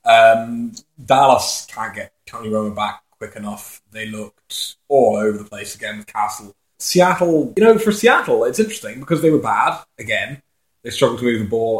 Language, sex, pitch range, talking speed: English, male, 110-150 Hz, 185 wpm